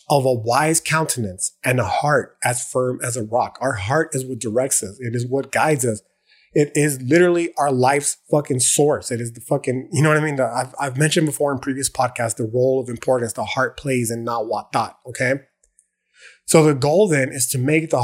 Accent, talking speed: American, 225 wpm